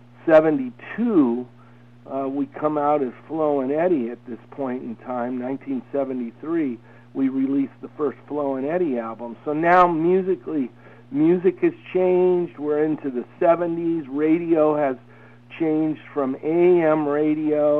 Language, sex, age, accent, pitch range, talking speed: English, male, 60-79, American, 125-160 Hz, 130 wpm